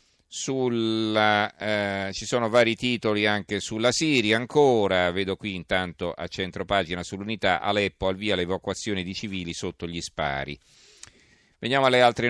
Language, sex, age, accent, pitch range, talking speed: Italian, male, 40-59, native, 90-115 Hz, 140 wpm